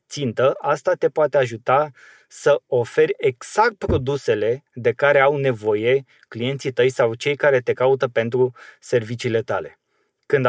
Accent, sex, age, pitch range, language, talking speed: native, male, 20-39, 125-185 Hz, Romanian, 135 wpm